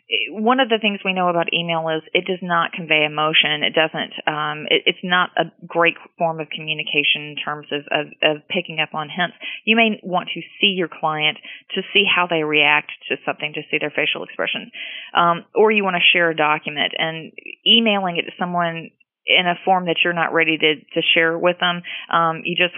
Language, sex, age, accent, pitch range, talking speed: English, female, 30-49, American, 155-175 Hz, 215 wpm